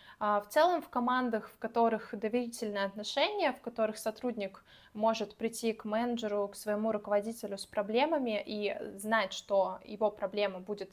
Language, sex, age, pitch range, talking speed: Russian, female, 20-39, 210-245 Hz, 145 wpm